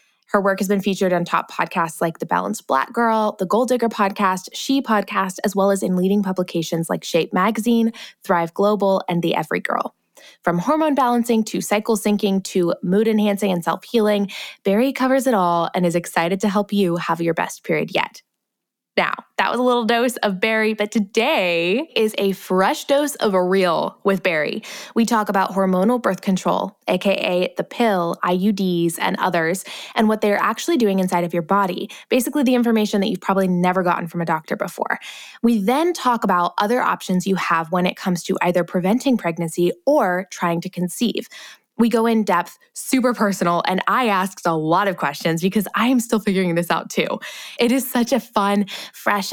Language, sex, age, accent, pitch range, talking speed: English, female, 20-39, American, 180-225 Hz, 190 wpm